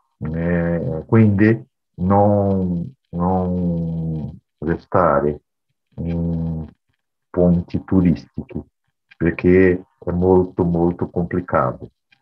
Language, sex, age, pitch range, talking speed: Portuguese, male, 50-69, 85-95 Hz, 65 wpm